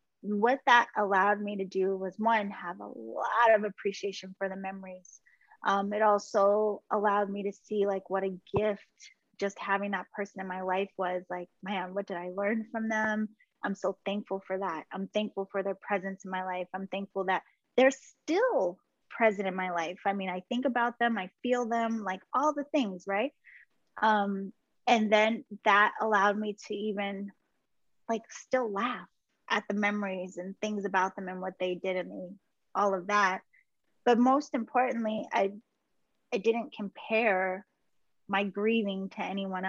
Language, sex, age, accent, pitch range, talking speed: English, female, 20-39, American, 190-225 Hz, 175 wpm